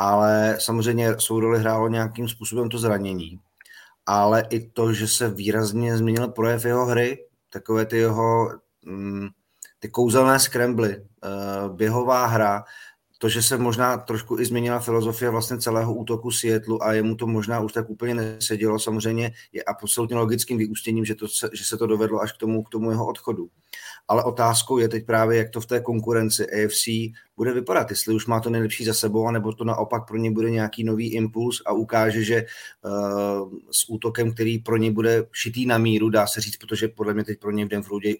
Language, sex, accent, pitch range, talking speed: Czech, male, native, 110-115 Hz, 185 wpm